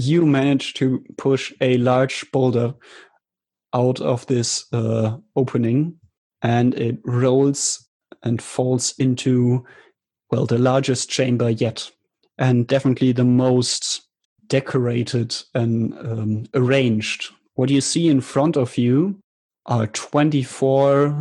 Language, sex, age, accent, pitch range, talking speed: English, male, 30-49, German, 120-135 Hz, 115 wpm